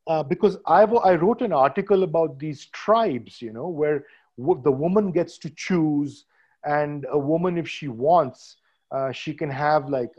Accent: Indian